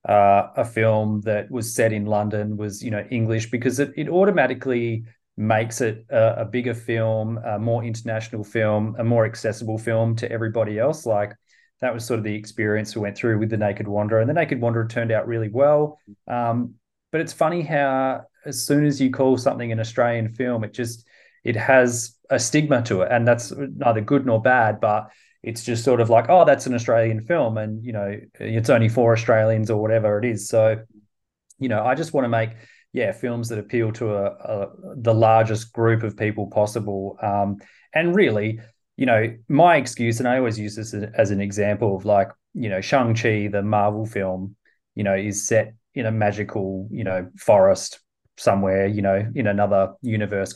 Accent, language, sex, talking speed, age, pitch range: Australian, English, male, 195 wpm, 30-49, 105-120 Hz